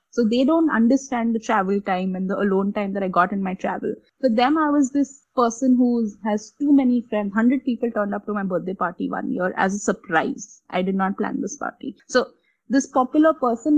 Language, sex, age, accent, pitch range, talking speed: English, female, 20-39, Indian, 210-275 Hz, 220 wpm